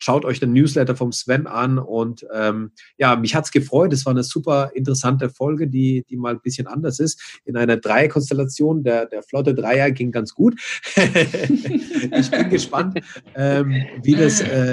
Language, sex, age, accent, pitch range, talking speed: German, male, 30-49, German, 120-145 Hz, 170 wpm